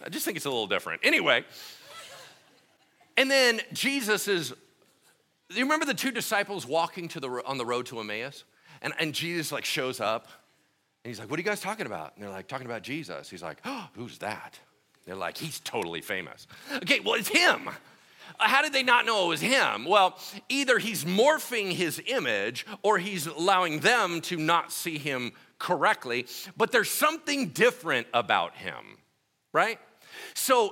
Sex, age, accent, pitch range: male, 40-59, American, 140-225 Hz